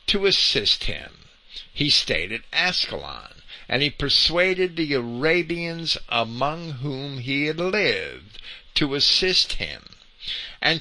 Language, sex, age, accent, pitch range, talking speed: English, male, 50-69, American, 130-195 Hz, 115 wpm